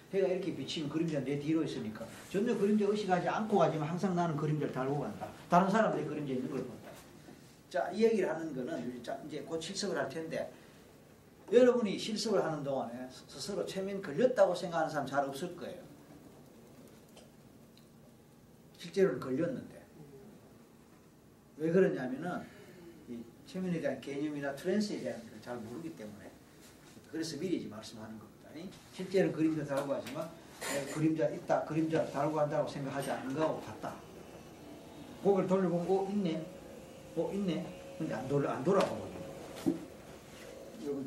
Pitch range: 140-195 Hz